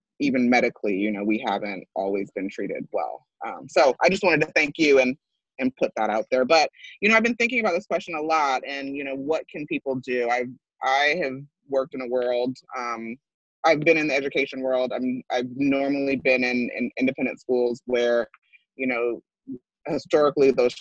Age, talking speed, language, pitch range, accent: 20-39, 200 wpm, English, 115-140 Hz, American